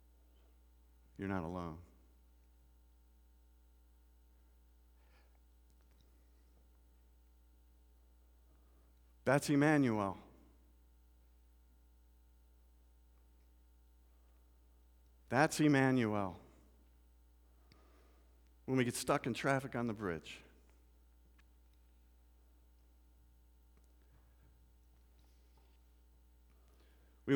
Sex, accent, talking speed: male, American, 35 wpm